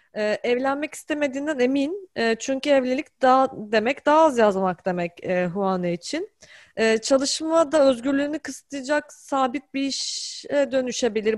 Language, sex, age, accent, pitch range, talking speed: Turkish, female, 30-49, native, 205-280 Hz, 130 wpm